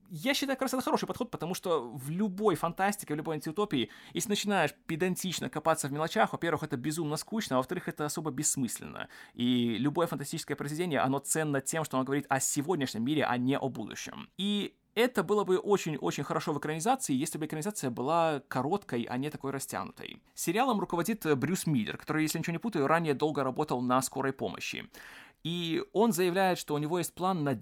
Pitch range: 145-200 Hz